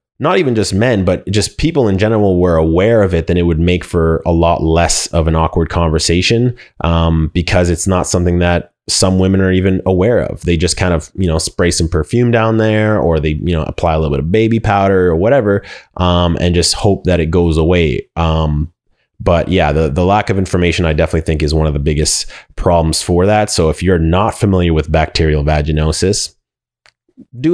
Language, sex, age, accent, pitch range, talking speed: English, male, 20-39, American, 85-110 Hz, 210 wpm